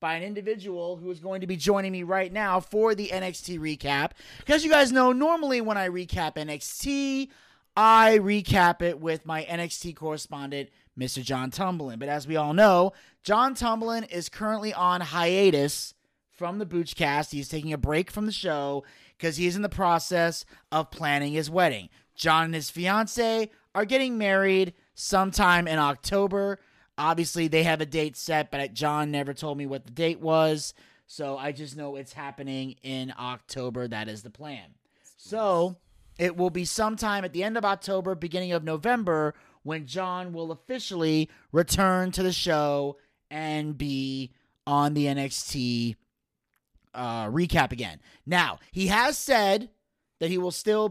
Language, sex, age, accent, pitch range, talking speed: English, male, 30-49, American, 145-195 Hz, 165 wpm